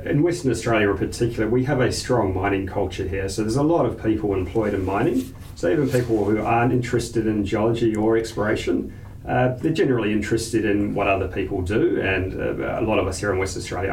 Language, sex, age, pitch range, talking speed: English, male, 40-59, 105-125 Hz, 215 wpm